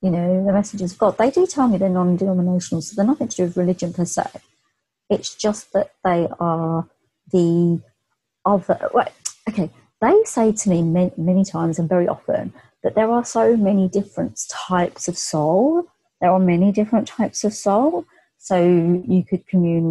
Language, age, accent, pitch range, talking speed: English, 30-49, British, 170-215 Hz, 180 wpm